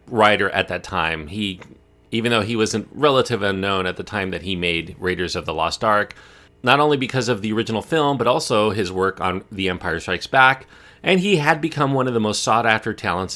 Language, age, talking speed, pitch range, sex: English, 30-49, 225 wpm, 95-130 Hz, male